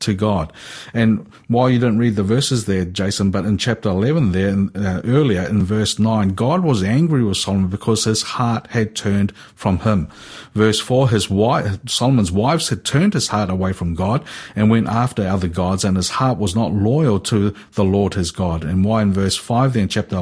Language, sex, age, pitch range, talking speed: English, male, 50-69, 100-125 Hz, 205 wpm